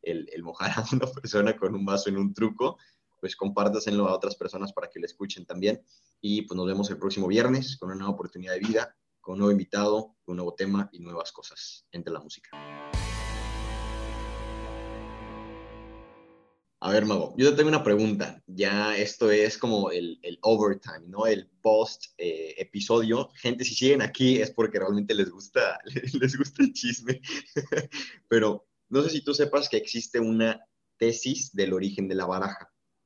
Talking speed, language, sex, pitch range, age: 175 wpm, Spanish, male, 100-125 Hz, 20-39